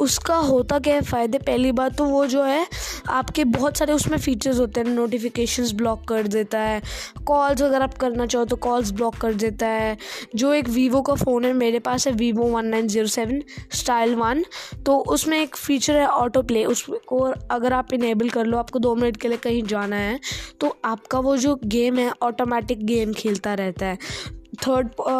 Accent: Indian